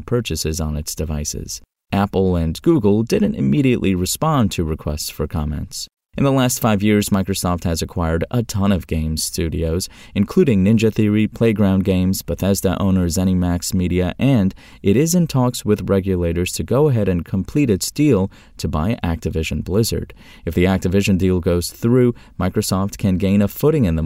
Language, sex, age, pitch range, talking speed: English, male, 30-49, 85-115 Hz, 165 wpm